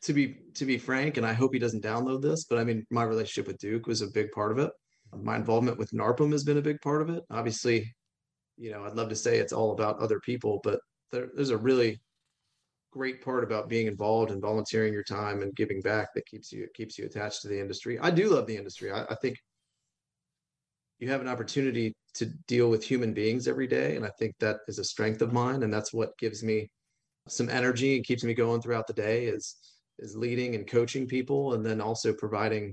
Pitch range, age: 110-130 Hz, 30-49